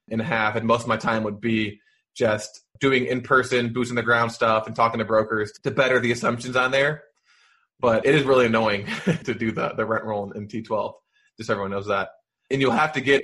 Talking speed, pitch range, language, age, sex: 220 wpm, 115-130 Hz, English, 20-39, male